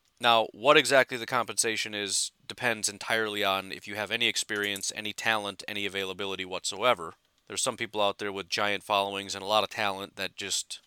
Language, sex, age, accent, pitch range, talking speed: English, male, 30-49, American, 100-120 Hz, 190 wpm